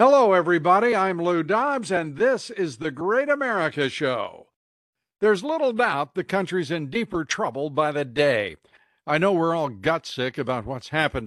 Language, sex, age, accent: English, male, 60-79, American